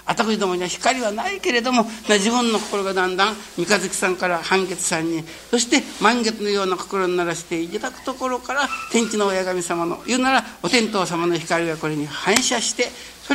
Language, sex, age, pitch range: Japanese, male, 60-79, 190-250 Hz